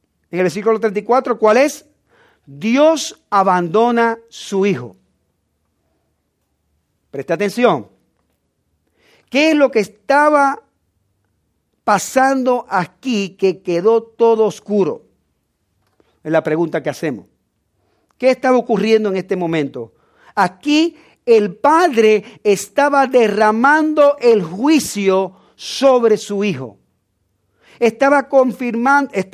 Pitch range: 180-250 Hz